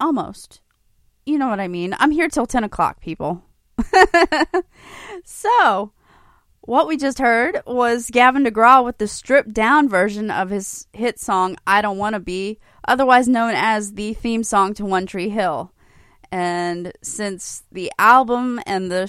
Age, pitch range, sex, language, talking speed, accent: 20-39, 185-245 Hz, female, English, 155 wpm, American